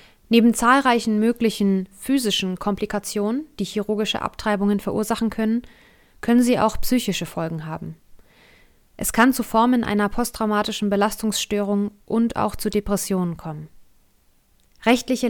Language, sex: German, female